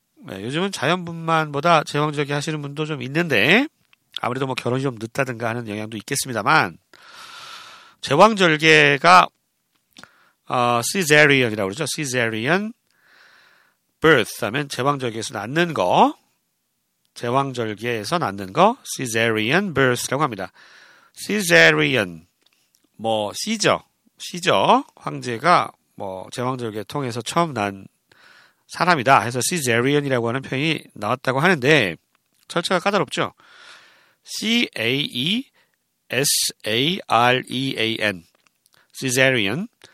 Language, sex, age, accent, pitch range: Korean, male, 40-59, native, 120-170 Hz